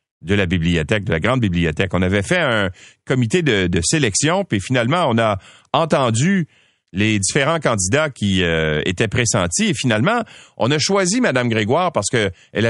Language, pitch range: French, 100-150 Hz